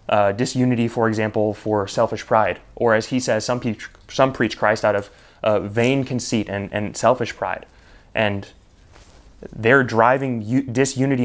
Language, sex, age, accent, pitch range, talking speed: English, male, 20-39, American, 105-125 Hz, 160 wpm